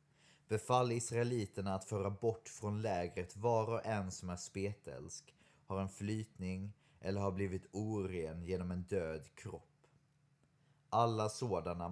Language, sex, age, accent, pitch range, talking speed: Swedish, male, 30-49, native, 95-120 Hz, 130 wpm